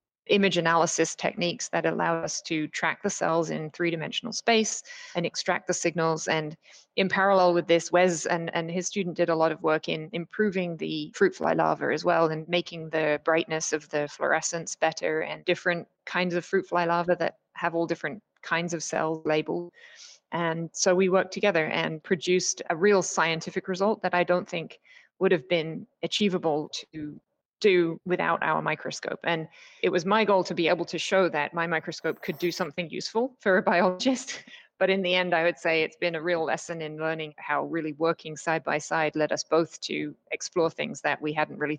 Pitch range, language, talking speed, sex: 155-180 Hz, English, 195 wpm, female